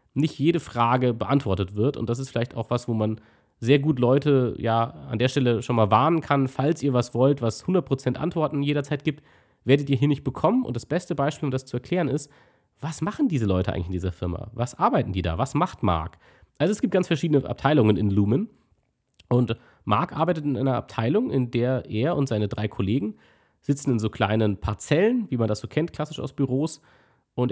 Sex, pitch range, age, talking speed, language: male, 115-150 Hz, 30-49, 210 wpm, German